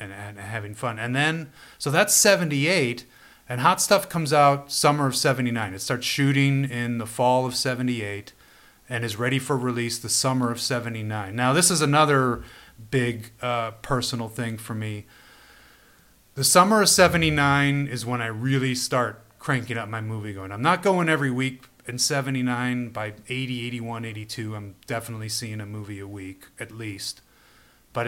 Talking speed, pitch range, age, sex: 170 wpm, 115-140 Hz, 30-49, male